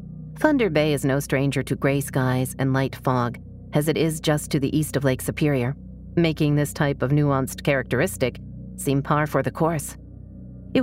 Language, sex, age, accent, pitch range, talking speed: English, female, 40-59, American, 130-165 Hz, 185 wpm